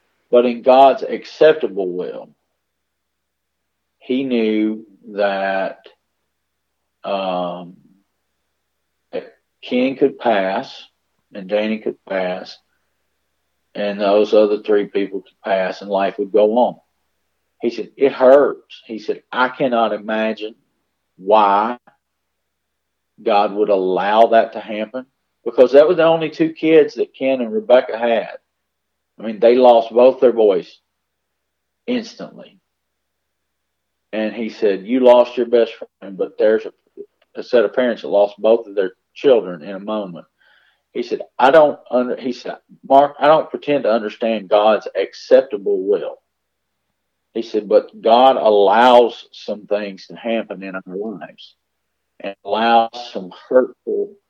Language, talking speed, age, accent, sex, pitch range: English, 135 wpm, 50-69, American, male, 80-130 Hz